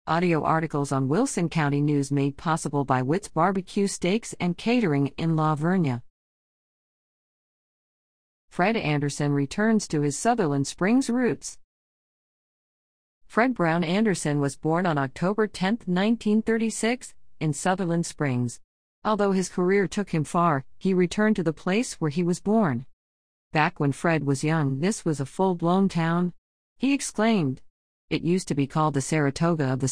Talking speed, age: 145 wpm, 50-69